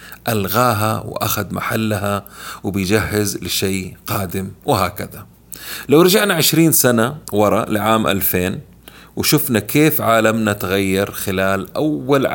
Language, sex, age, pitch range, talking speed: Arabic, male, 30-49, 95-120 Hz, 95 wpm